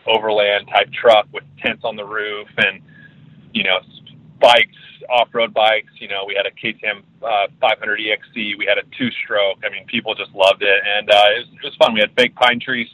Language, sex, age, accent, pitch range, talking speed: English, male, 30-49, American, 105-120 Hz, 205 wpm